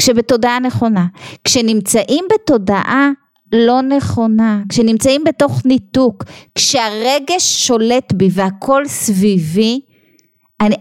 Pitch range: 195-270 Hz